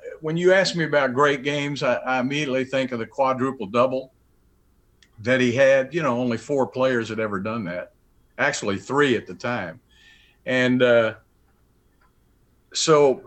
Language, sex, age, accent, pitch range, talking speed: English, male, 50-69, American, 110-130 Hz, 155 wpm